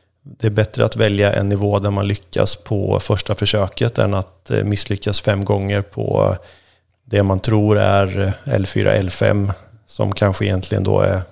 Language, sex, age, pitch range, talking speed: Swedish, male, 30-49, 100-115 Hz, 155 wpm